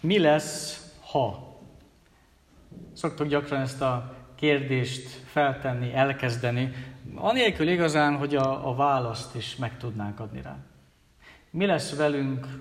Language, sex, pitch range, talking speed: Hungarian, male, 125-150 Hz, 110 wpm